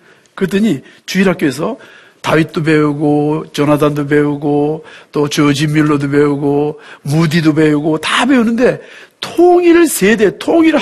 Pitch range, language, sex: 150-235 Hz, Korean, male